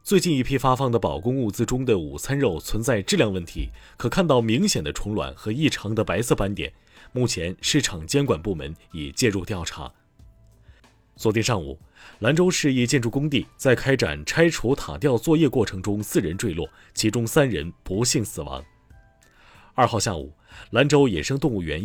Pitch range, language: 95-130 Hz, Chinese